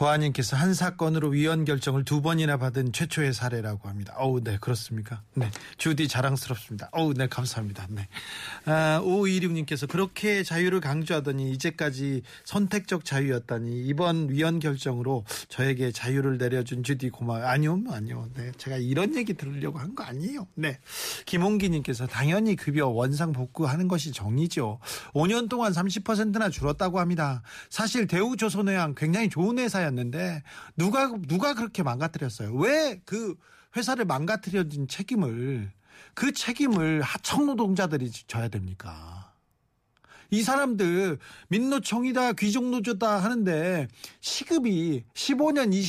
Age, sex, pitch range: 40-59, male, 135-210 Hz